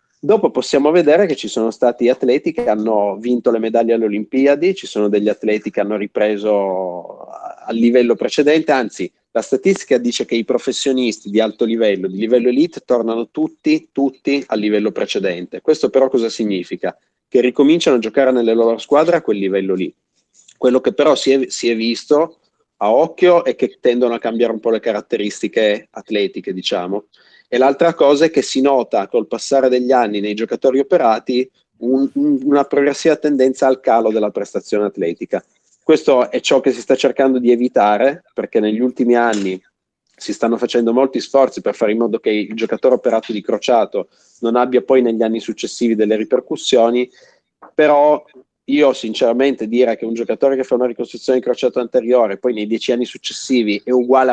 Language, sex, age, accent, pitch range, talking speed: Italian, male, 30-49, native, 110-135 Hz, 175 wpm